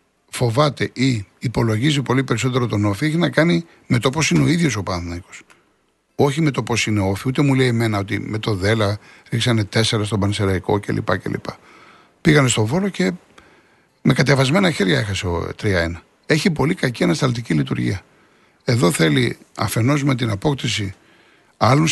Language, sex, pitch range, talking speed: Greek, male, 100-130 Hz, 165 wpm